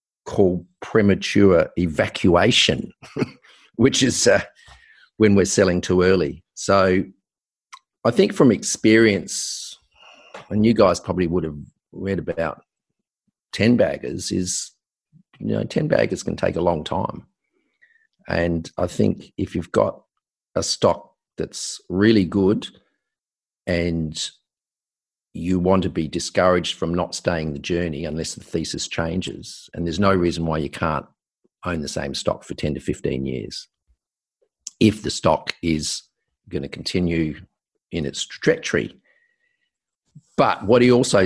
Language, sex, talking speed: English, male, 135 wpm